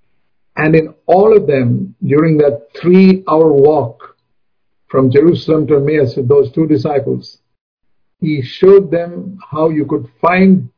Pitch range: 145-205 Hz